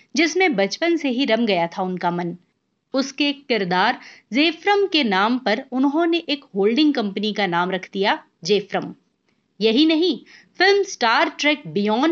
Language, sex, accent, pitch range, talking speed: Hindi, female, native, 205-300 Hz, 135 wpm